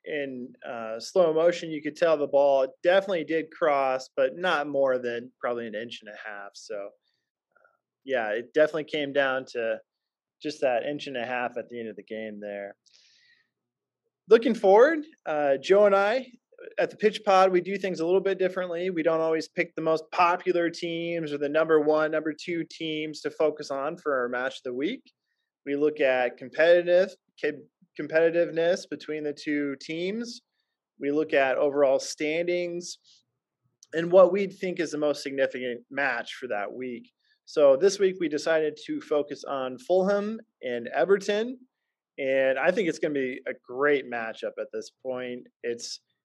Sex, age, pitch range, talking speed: male, 20-39, 135-180 Hz, 175 wpm